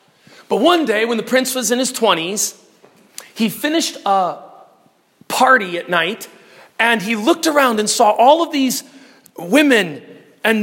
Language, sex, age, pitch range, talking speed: English, male, 40-59, 185-265 Hz, 150 wpm